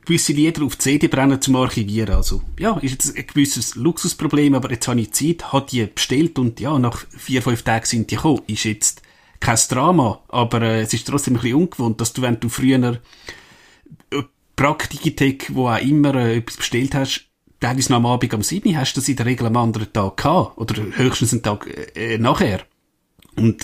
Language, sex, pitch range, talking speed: German, male, 115-145 Hz, 210 wpm